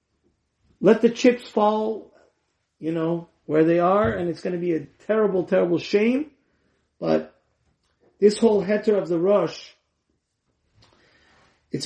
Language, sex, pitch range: English, male, 145-200 Hz